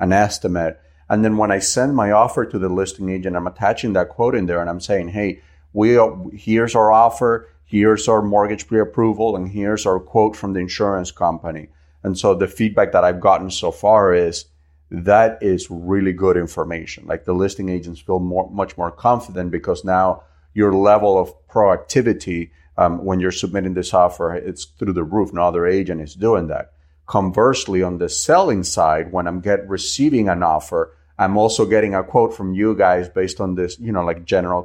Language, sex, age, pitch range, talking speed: English, male, 40-59, 85-105 Hz, 190 wpm